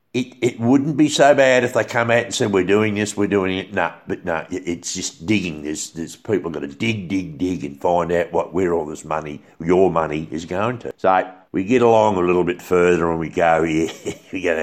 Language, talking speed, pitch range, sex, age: English, 245 wpm, 85-115 Hz, male, 60-79